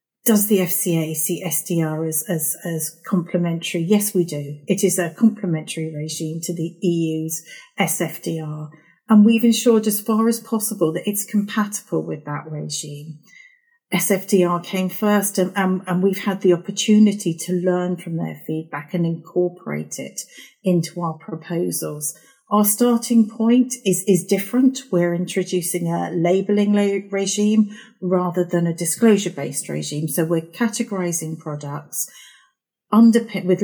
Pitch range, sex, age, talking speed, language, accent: 165-210 Hz, female, 40-59, 135 wpm, English, British